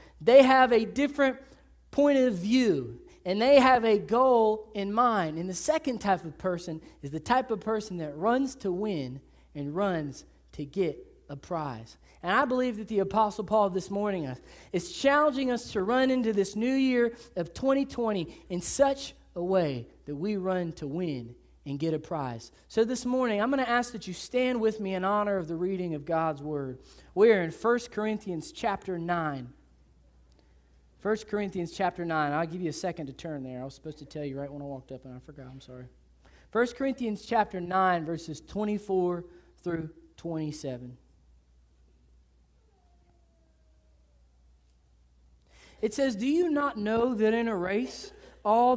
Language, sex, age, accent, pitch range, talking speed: English, male, 20-39, American, 140-225 Hz, 175 wpm